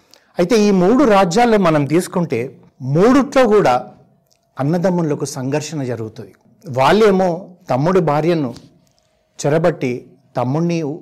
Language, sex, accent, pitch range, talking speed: Telugu, male, native, 140-190 Hz, 85 wpm